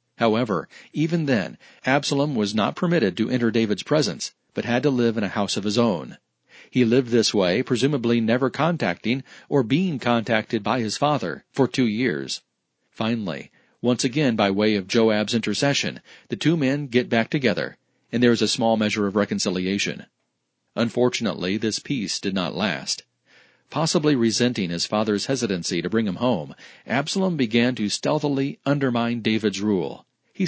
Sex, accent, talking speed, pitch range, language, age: male, American, 160 wpm, 110-135 Hz, English, 40-59